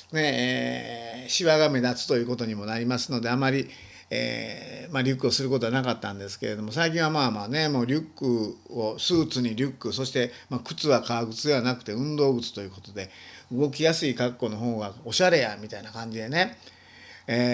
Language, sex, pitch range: Japanese, male, 115-145 Hz